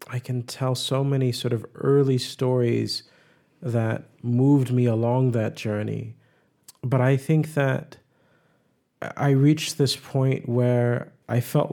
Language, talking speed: English, 135 wpm